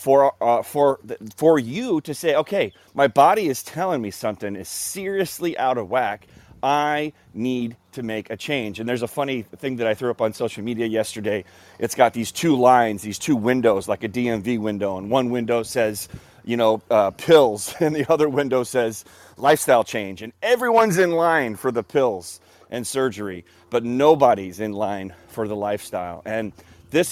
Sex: male